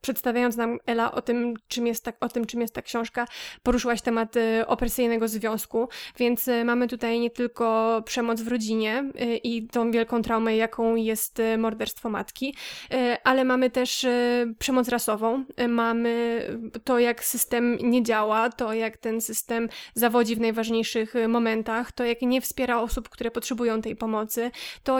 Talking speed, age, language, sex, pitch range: 140 wpm, 20-39, Polish, female, 225-245 Hz